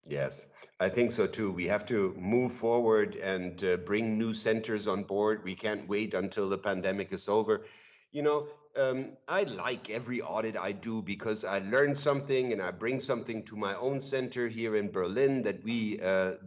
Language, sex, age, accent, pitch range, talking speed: English, male, 60-79, German, 105-130 Hz, 190 wpm